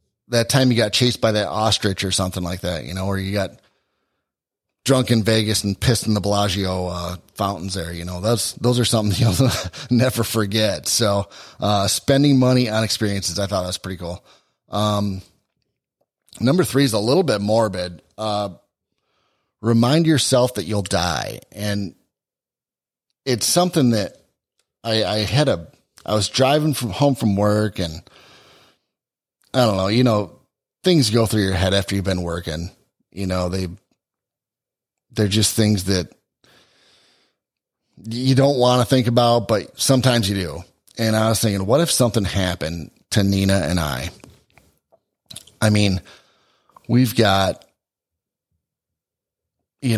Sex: male